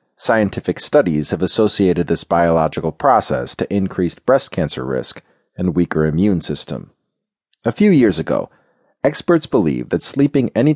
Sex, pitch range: male, 85-115 Hz